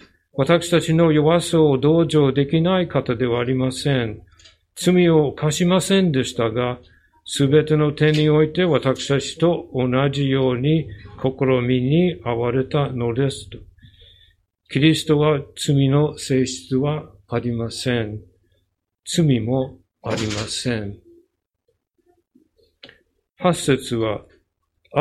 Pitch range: 110-155 Hz